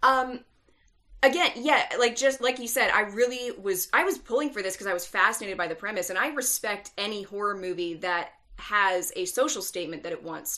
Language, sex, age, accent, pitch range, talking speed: English, female, 30-49, American, 180-210 Hz, 210 wpm